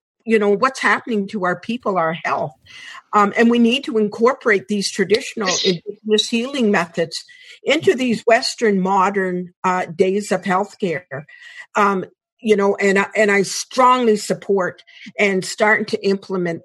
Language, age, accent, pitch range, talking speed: English, 50-69, American, 185-220 Hz, 145 wpm